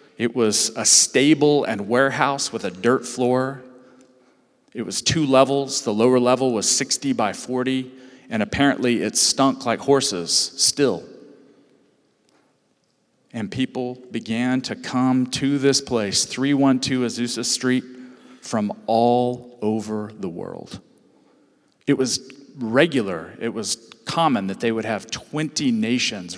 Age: 40-59